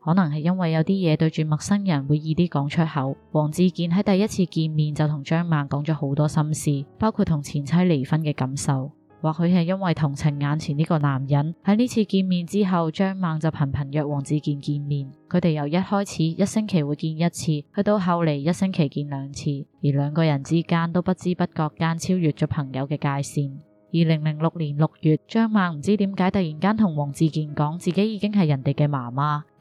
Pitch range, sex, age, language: 150-175 Hz, female, 20-39, Chinese